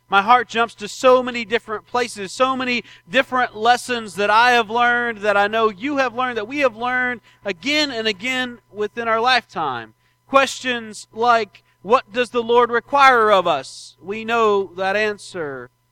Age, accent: 40-59, American